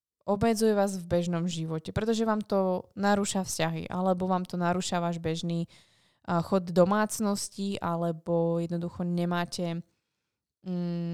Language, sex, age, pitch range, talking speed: Slovak, female, 20-39, 175-205 Hz, 125 wpm